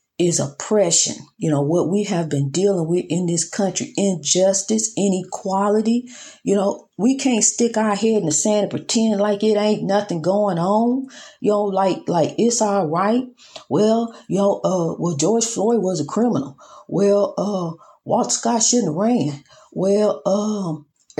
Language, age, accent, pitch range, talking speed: English, 40-59, American, 195-255 Hz, 165 wpm